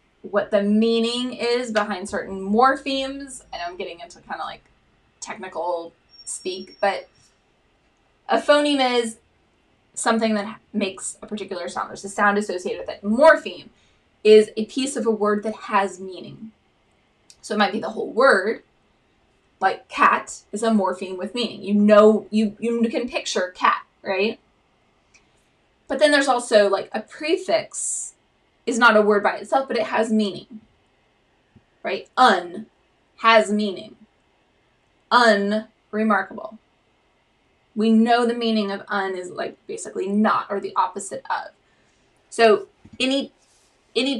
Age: 20-39